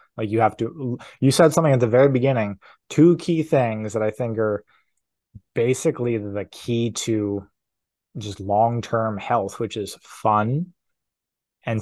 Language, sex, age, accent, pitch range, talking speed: English, male, 20-39, American, 110-125 Hz, 145 wpm